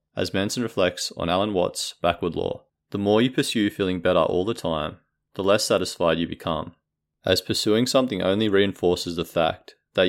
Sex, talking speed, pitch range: male, 180 wpm, 85-105 Hz